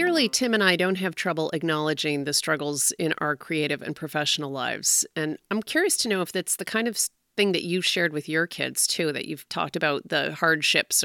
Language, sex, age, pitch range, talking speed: English, female, 30-49, 150-205 Hz, 215 wpm